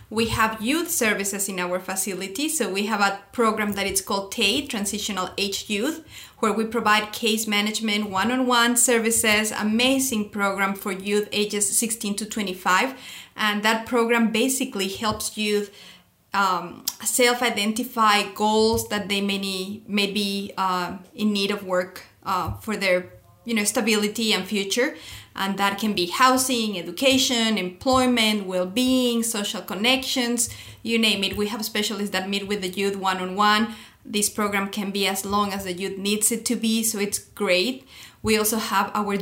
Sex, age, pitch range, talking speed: female, 30-49, 200-235 Hz, 160 wpm